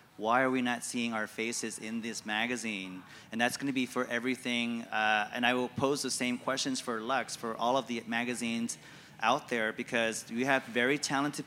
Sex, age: male, 30-49